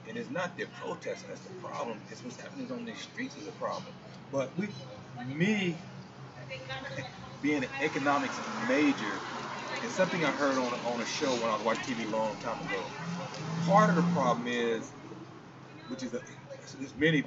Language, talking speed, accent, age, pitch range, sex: English, 175 wpm, American, 30-49, 120-150 Hz, male